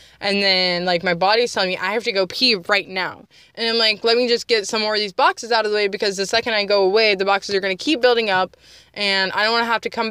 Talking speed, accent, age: 310 wpm, American, 20-39